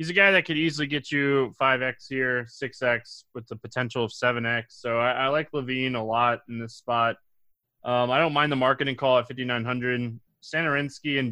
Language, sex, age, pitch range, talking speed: English, male, 20-39, 115-135 Hz, 195 wpm